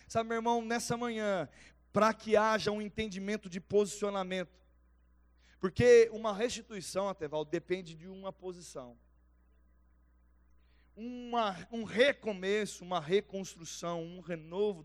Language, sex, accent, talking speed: Portuguese, male, Brazilian, 110 wpm